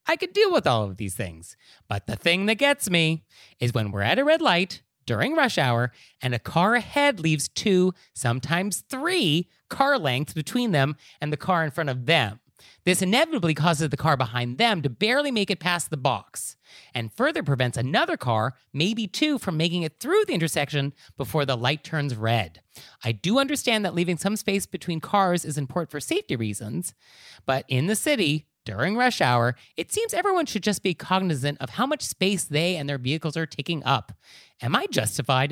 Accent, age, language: American, 30-49, English